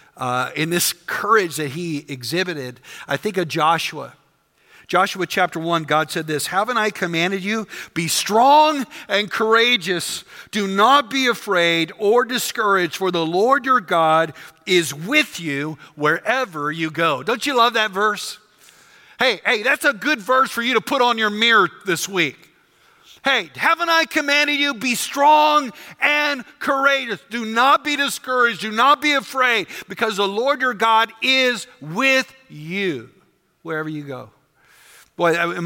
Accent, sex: American, male